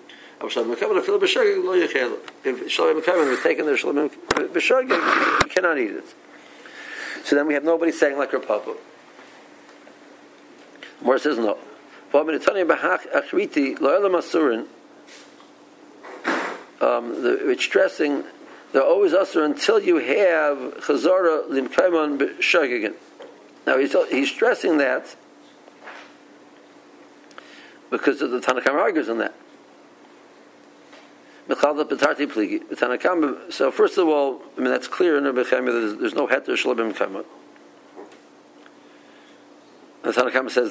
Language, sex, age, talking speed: English, male, 60-79, 105 wpm